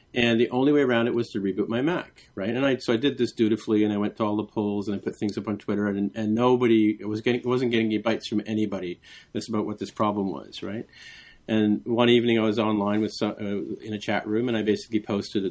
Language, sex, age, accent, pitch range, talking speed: English, male, 40-59, American, 105-115 Hz, 265 wpm